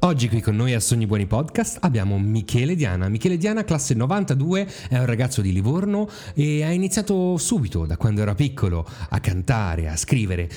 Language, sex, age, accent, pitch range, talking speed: Italian, male, 30-49, native, 95-140 Hz, 180 wpm